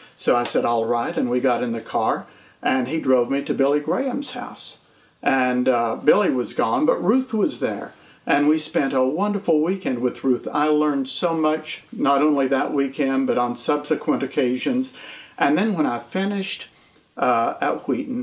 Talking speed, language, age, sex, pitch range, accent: 185 wpm, English, 50-69, male, 125-155 Hz, American